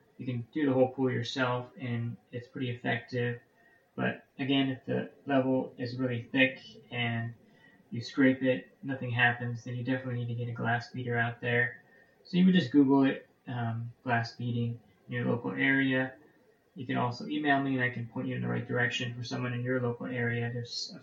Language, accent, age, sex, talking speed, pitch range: English, American, 20-39, male, 205 wpm, 120-130 Hz